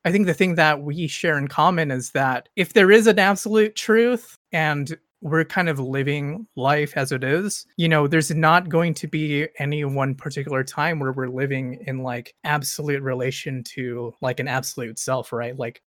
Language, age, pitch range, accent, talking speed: English, 20-39, 135-170 Hz, American, 195 wpm